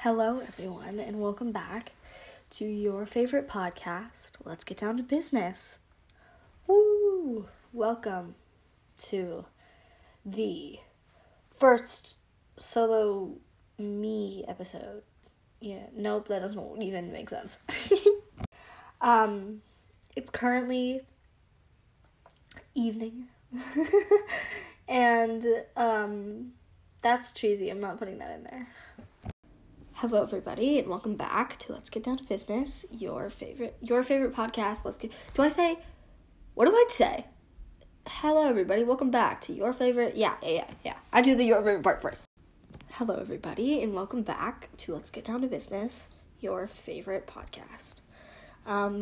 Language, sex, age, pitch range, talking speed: English, female, 10-29, 205-250 Hz, 120 wpm